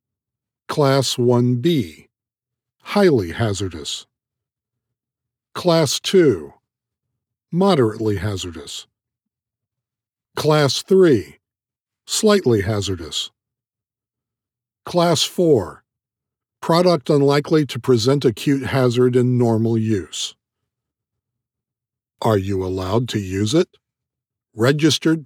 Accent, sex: American, male